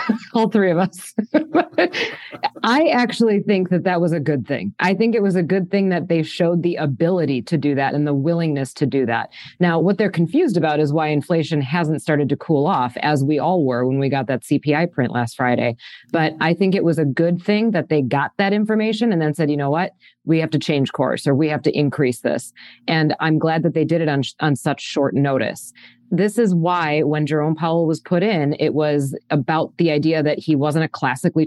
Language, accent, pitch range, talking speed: English, American, 145-175 Hz, 230 wpm